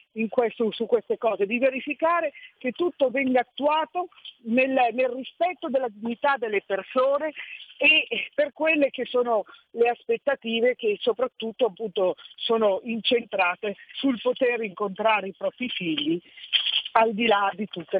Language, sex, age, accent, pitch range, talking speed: Italian, female, 50-69, native, 225-285 Hz, 135 wpm